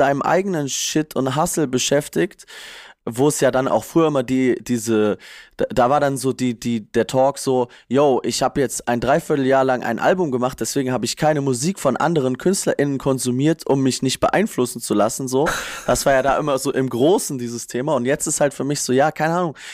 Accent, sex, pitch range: German, male, 130-175 Hz